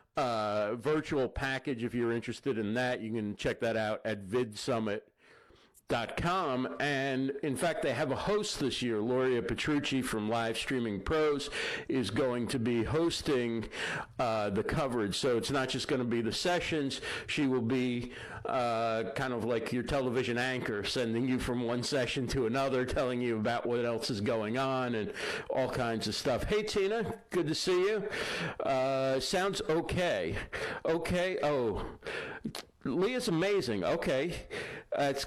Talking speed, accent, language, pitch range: 160 wpm, American, English, 125-155 Hz